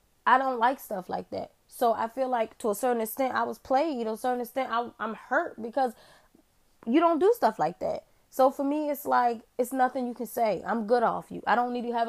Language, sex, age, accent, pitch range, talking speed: English, female, 20-39, American, 205-250 Hz, 245 wpm